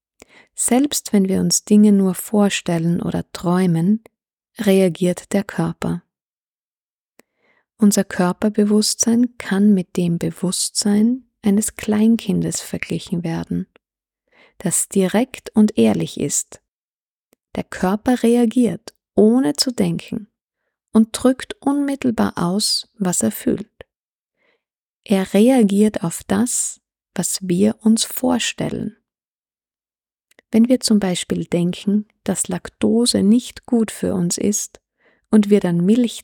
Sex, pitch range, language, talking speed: female, 185-225 Hz, German, 105 wpm